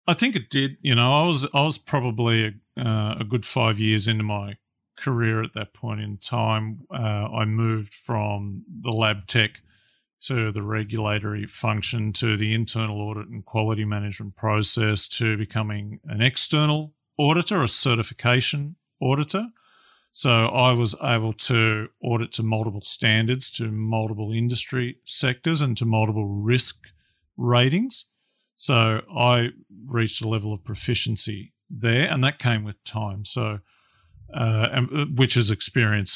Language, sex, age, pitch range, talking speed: English, male, 40-59, 105-125 Hz, 145 wpm